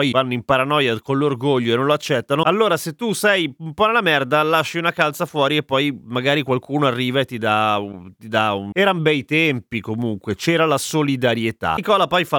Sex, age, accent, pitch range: male, 30-49, native, 115-160 Hz